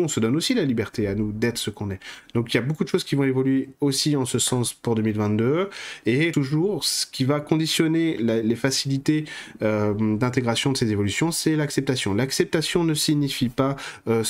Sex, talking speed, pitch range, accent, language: male, 205 wpm, 110-140 Hz, French, French